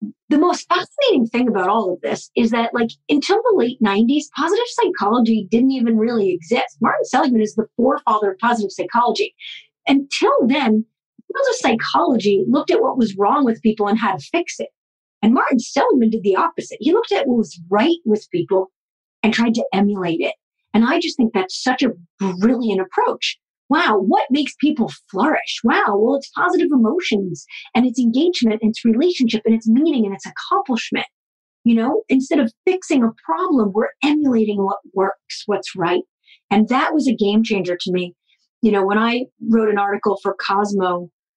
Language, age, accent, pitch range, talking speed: English, 40-59, American, 200-265 Hz, 180 wpm